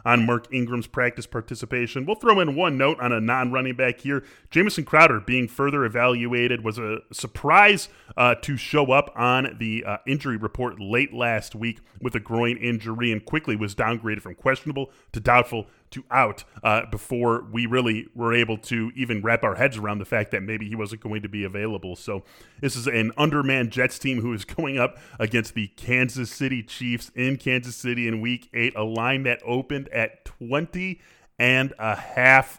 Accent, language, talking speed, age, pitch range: American, English, 180 wpm, 30-49, 110-135 Hz